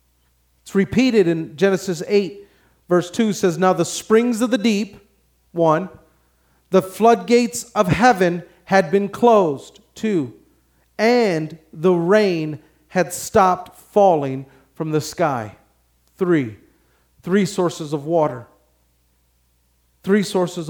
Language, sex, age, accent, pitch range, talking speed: English, male, 40-59, American, 150-195 Hz, 110 wpm